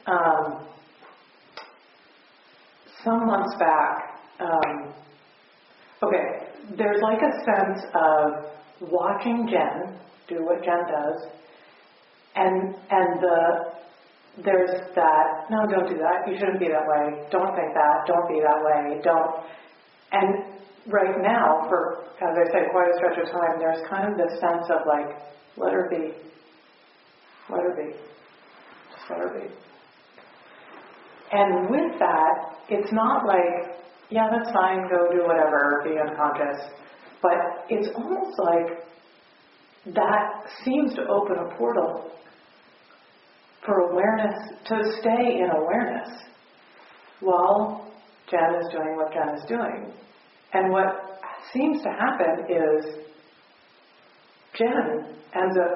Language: English